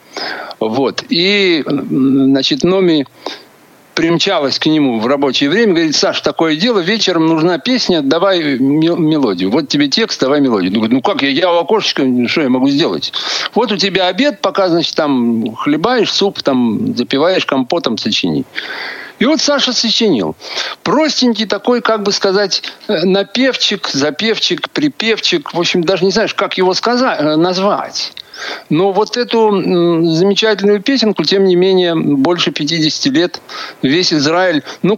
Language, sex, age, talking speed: Russian, male, 60-79, 140 wpm